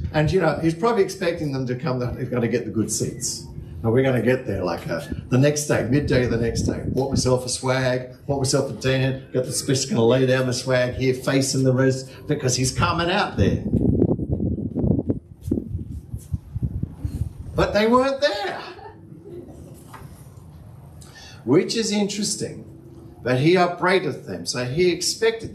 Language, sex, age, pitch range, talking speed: English, male, 50-69, 110-135 Hz, 170 wpm